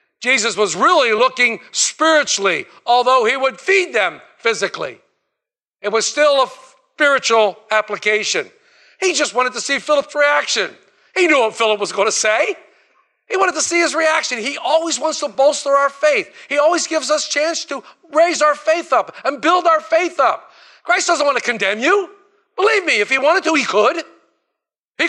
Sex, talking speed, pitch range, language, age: male, 180 wpm, 220-330 Hz, English, 50-69